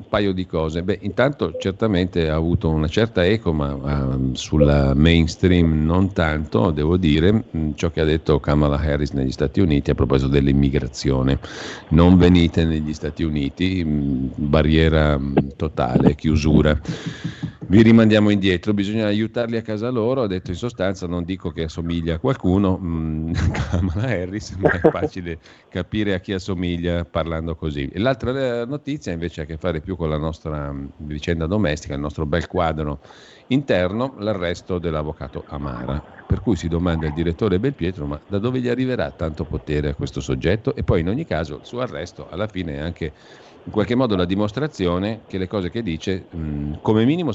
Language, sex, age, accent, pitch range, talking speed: Italian, male, 50-69, native, 75-100 Hz, 170 wpm